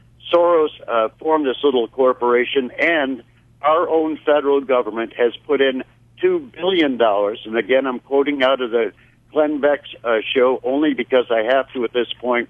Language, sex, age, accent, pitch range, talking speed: English, male, 60-79, American, 120-145 Hz, 170 wpm